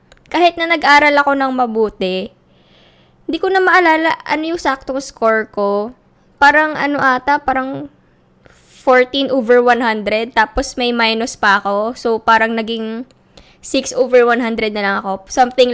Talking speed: 145 wpm